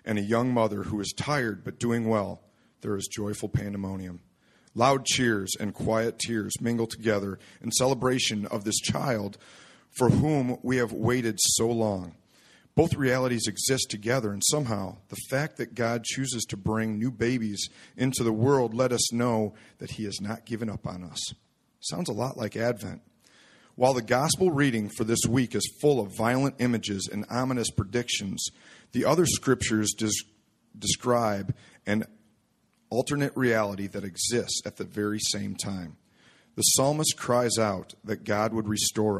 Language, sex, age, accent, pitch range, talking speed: English, male, 40-59, American, 105-125 Hz, 160 wpm